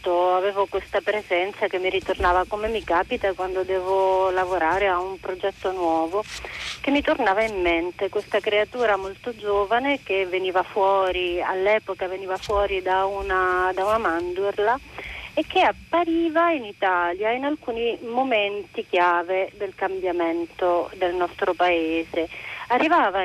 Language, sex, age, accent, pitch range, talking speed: Italian, female, 30-49, native, 185-230 Hz, 130 wpm